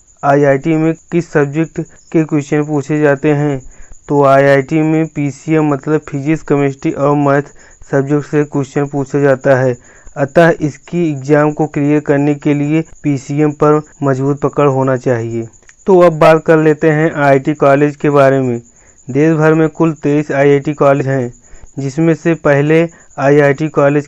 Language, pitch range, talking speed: Hindi, 140-160 Hz, 155 wpm